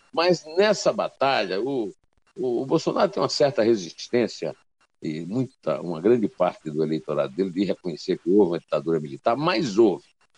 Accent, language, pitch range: Brazilian, Portuguese, 115-180 Hz